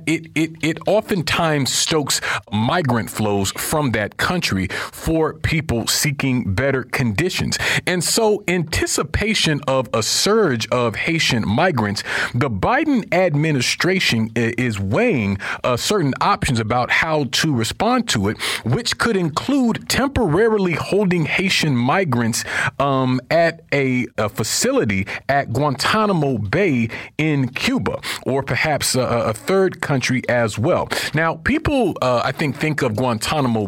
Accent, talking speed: American, 130 wpm